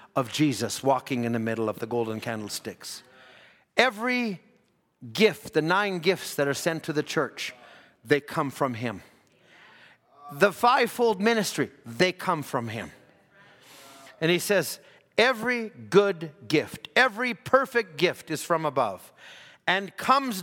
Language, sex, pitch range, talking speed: English, male, 140-215 Hz, 135 wpm